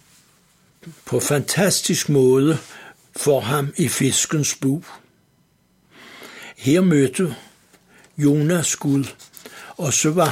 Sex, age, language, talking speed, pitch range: male, 60-79, Danish, 85 wpm, 130-160 Hz